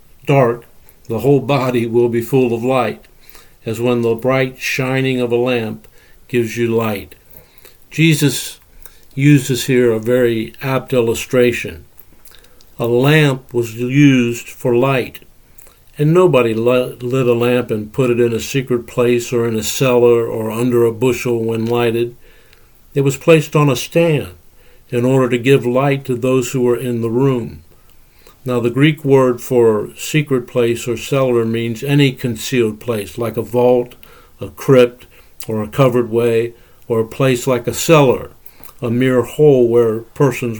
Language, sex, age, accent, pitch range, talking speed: English, male, 60-79, American, 115-130 Hz, 155 wpm